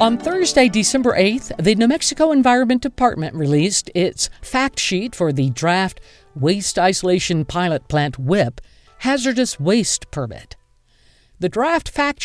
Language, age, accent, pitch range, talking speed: English, 50-69, American, 150-235 Hz, 130 wpm